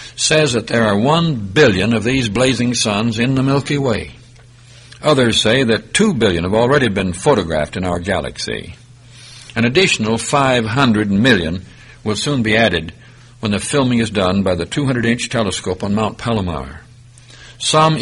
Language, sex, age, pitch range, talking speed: English, male, 60-79, 105-130 Hz, 155 wpm